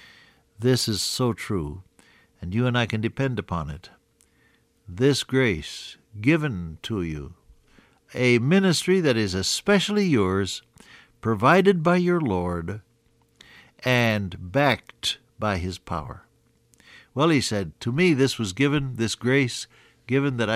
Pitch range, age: 105-150 Hz, 60-79